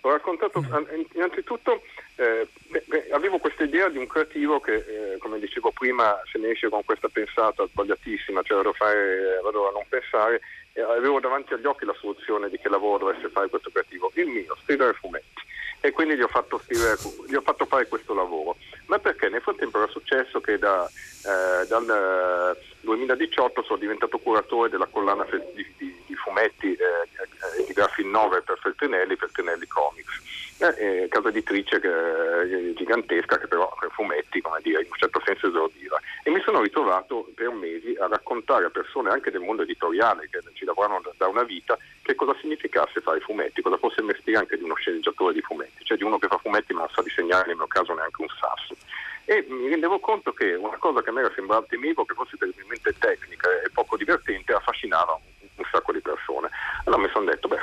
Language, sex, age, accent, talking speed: Italian, male, 40-59, native, 195 wpm